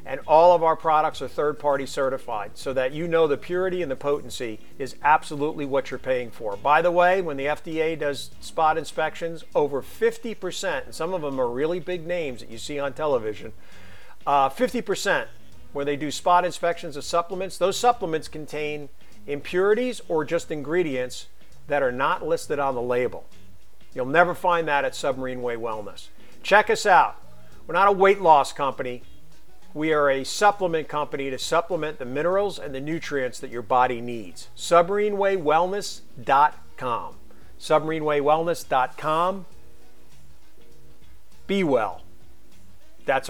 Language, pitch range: English, 135-185 Hz